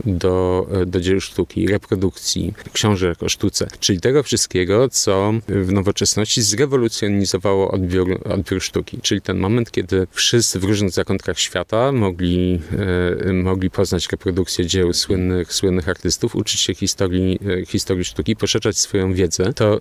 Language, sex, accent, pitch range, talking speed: Polish, male, native, 95-110 Hz, 135 wpm